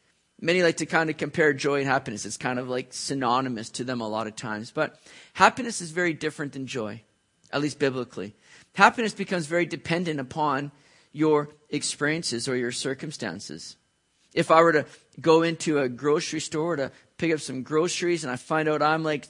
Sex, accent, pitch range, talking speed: male, American, 140-185 Hz, 185 wpm